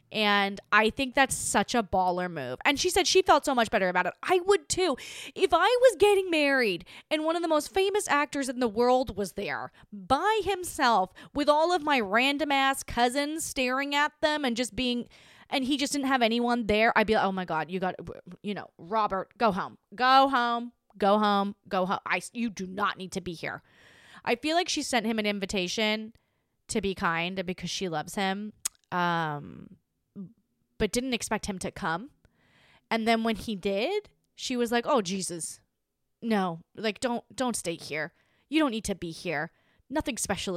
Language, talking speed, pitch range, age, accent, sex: English, 195 wpm, 190-270 Hz, 20-39, American, female